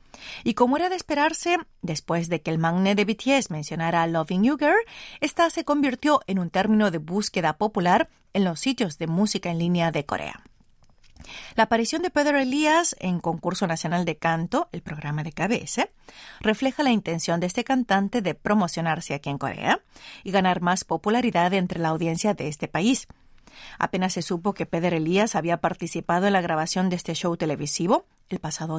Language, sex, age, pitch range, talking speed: Spanish, female, 40-59, 165-230 Hz, 180 wpm